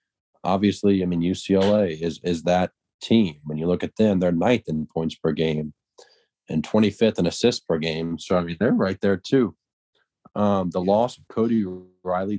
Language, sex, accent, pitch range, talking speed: English, male, American, 90-105 Hz, 185 wpm